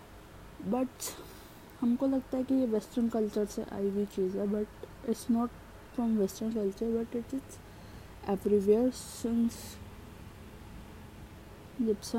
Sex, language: female, Hindi